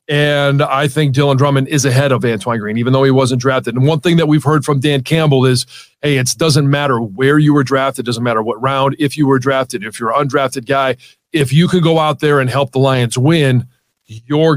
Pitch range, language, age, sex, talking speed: 125-145 Hz, English, 40-59, male, 245 wpm